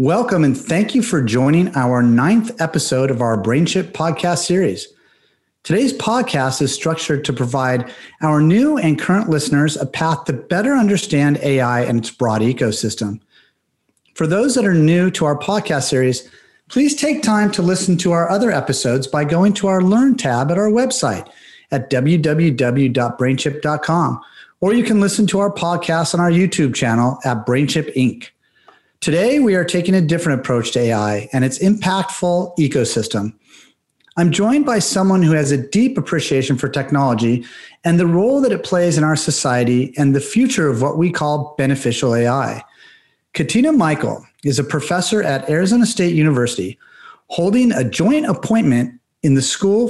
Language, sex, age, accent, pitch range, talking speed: English, male, 40-59, American, 135-195 Hz, 165 wpm